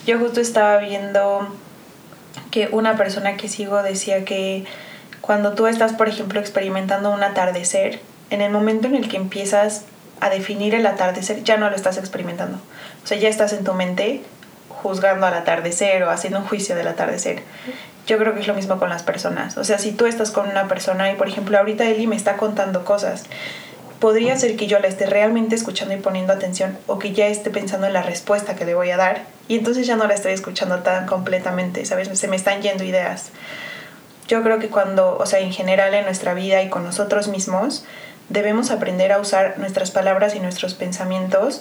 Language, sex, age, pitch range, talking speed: Spanish, female, 20-39, 190-215 Hz, 200 wpm